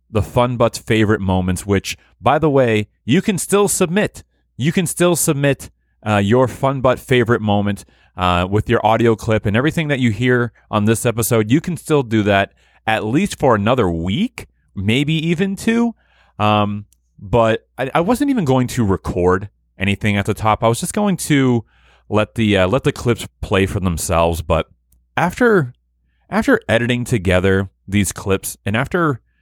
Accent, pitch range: American, 95-130 Hz